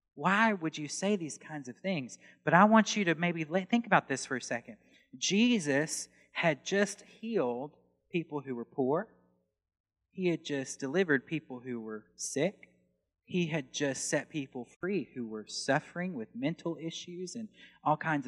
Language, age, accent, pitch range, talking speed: English, 30-49, American, 110-180 Hz, 165 wpm